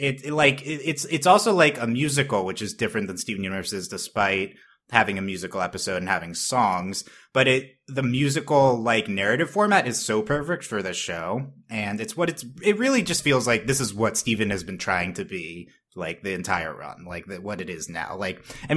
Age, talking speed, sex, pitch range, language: 30-49, 215 wpm, male, 105-150 Hz, English